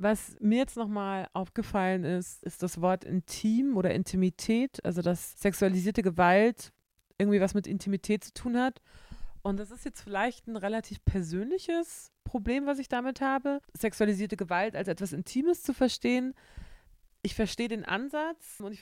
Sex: female